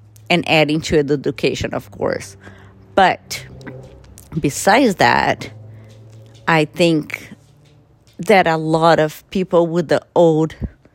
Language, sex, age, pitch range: English, female, 40-59, 150-190 Hz